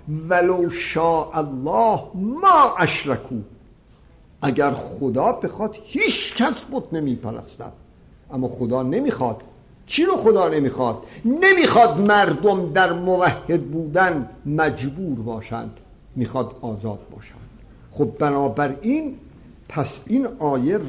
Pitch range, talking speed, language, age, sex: 125-185 Hz, 100 wpm, Persian, 60-79, male